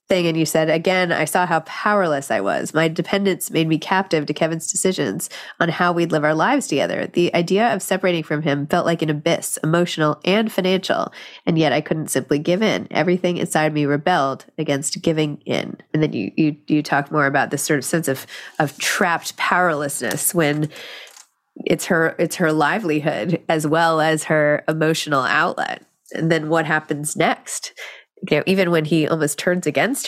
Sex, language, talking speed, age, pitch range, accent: female, English, 190 wpm, 30-49, 150-180 Hz, American